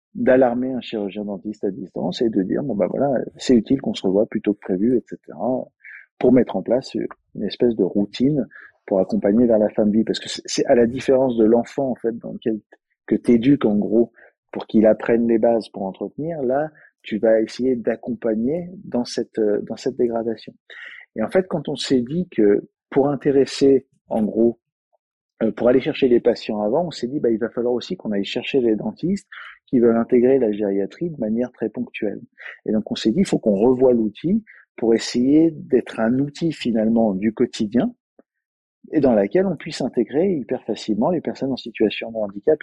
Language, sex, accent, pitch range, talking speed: French, male, French, 110-135 Hz, 200 wpm